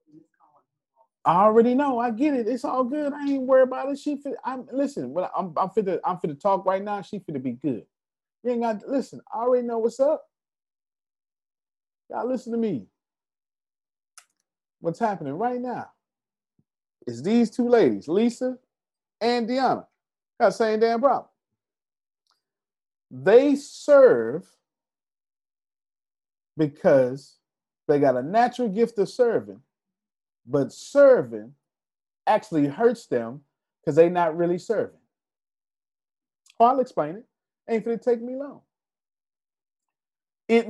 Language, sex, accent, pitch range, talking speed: English, male, American, 190-265 Hz, 130 wpm